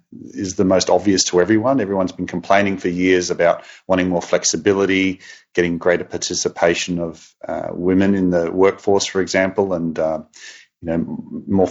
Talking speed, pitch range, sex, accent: 160 wpm, 90-105 Hz, male, Australian